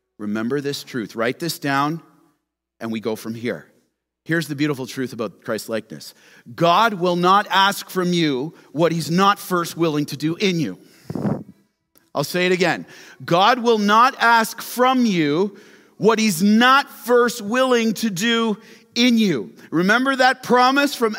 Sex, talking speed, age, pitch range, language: male, 160 wpm, 40-59, 160-235 Hz, English